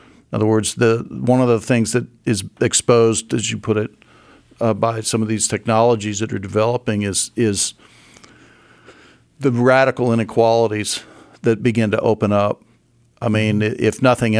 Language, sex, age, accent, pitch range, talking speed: English, male, 50-69, American, 105-120 Hz, 160 wpm